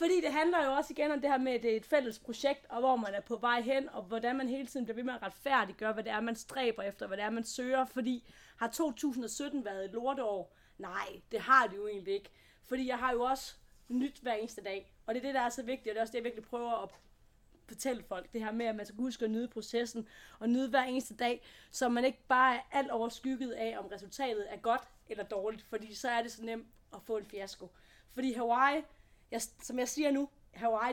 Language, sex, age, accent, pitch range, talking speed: Danish, female, 30-49, native, 220-260 Hz, 255 wpm